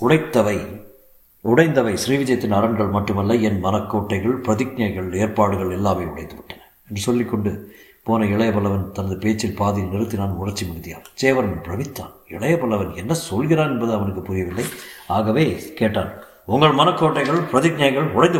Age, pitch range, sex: 50-69, 95-120 Hz, male